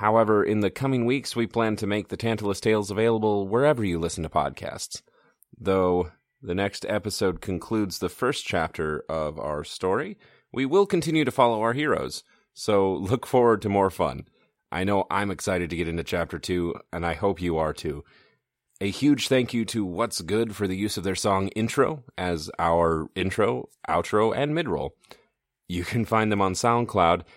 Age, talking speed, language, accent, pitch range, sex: 30-49, 180 wpm, English, American, 90-115 Hz, male